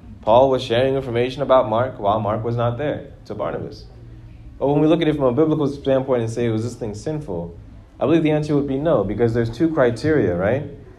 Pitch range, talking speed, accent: 95-125 Hz, 225 wpm, American